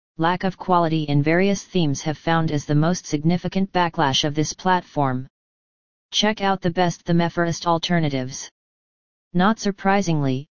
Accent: American